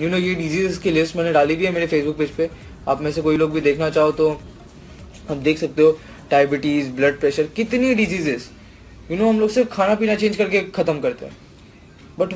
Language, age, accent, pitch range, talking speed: English, 20-39, Indian, 150-185 Hz, 180 wpm